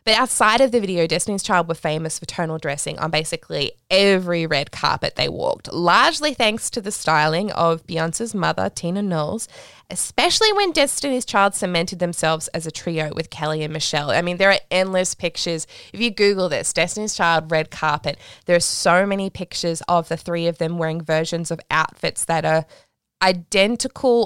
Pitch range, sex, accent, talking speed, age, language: 165-205 Hz, female, Australian, 180 wpm, 20-39, English